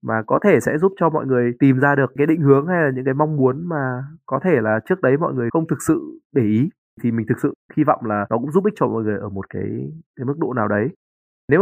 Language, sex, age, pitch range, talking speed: Vietnamese, male, 20-39, 110-150 Hz, 290 wpm